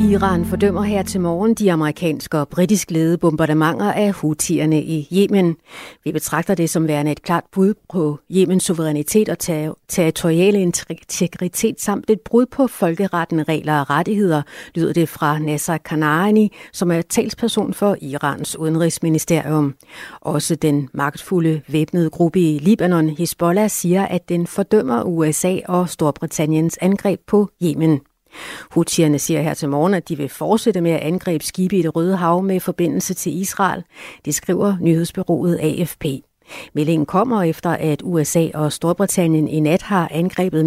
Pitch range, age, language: 155-190 Hz, 60-79, Danish